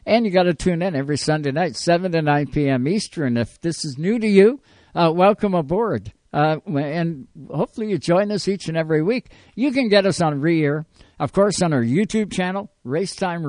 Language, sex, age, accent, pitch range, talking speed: English, male, 60-79, American, 145-190 Hz, 205 wpm